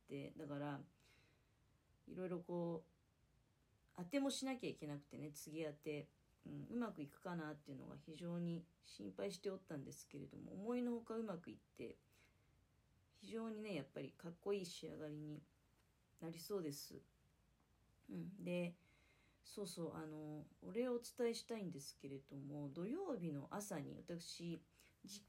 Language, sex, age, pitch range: Japanese, female, 40-59, 145-195 Hz